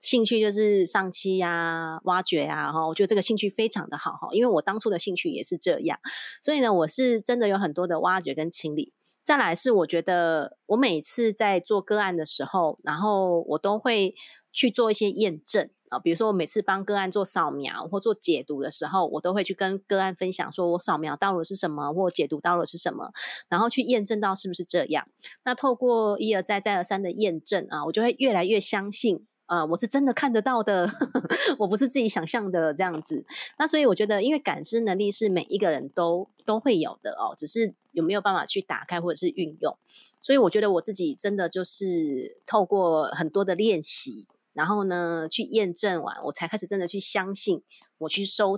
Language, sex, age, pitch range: Chinese, female, 30-49, 175-225 Hz